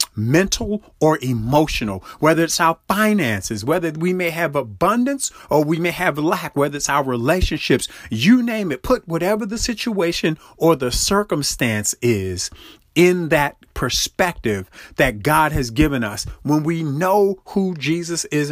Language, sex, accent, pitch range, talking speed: English, male, American, 120-165 Hz, 150 wpm